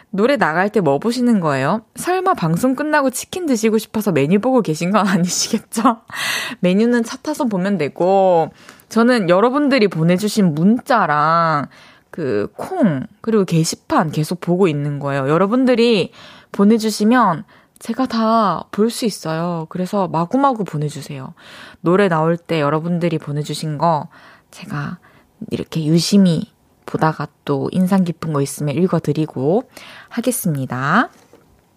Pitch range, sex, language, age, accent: 170-245 Hz, female, Korean, 20-39, native